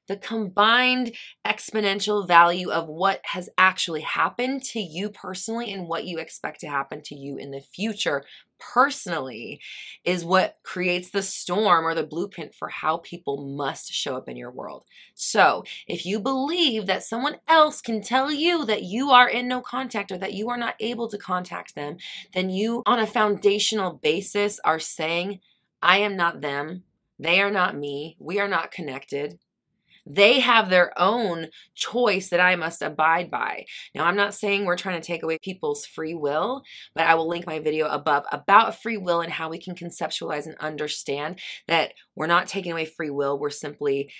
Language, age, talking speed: English, 20-39, 180 wpm